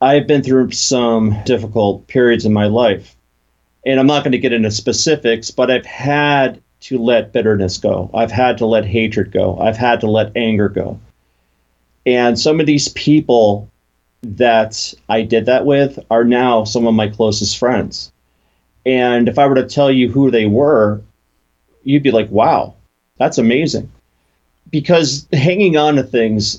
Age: 40-59